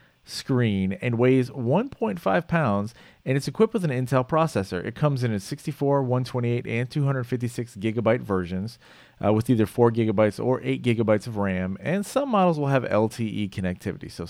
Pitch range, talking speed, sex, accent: 105-135 Hz, 170 wpm, male, American